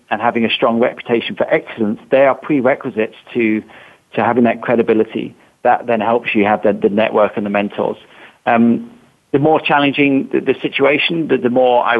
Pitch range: 110-130 Hz